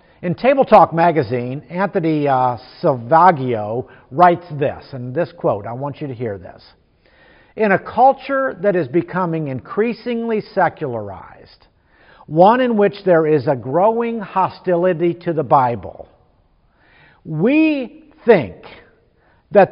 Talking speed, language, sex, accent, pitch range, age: 120 wpm, English, male, American, 130-195 Hz, 50-69